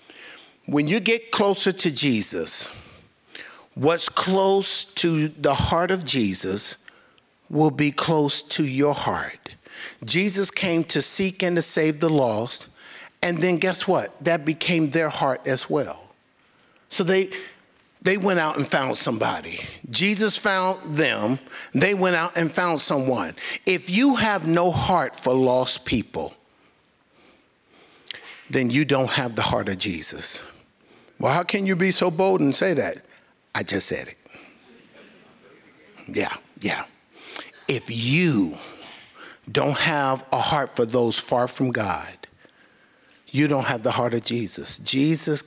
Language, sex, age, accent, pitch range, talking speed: English, male, 60-79, American, 135-185 Hz, 140 wpm